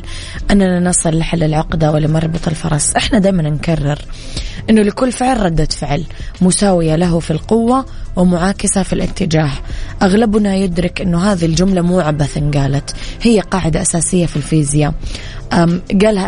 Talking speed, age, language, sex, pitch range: 130 wpm, 20-39, Arabic, female, 155-195 Hz